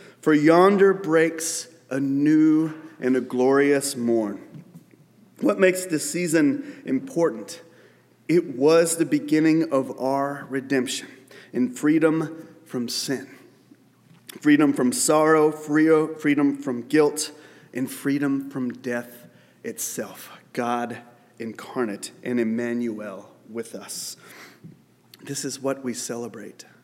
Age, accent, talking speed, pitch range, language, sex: 30-49, American, 105 wpm, 125-145 Hz, English, male